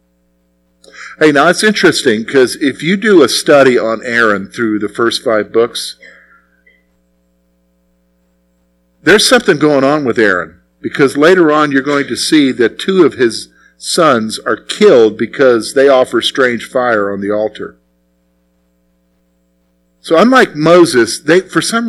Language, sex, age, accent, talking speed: English, male, 50-69, American, 135 wpm